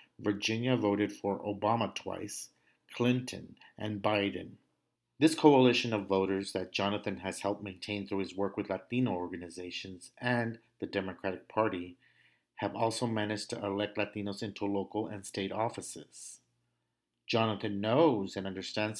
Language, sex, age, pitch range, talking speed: English, male, 50-69, 100-115 Hz, 135 wpm